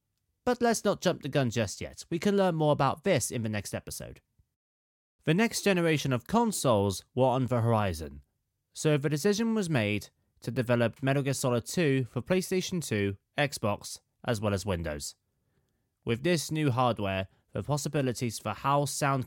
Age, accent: 20-39, British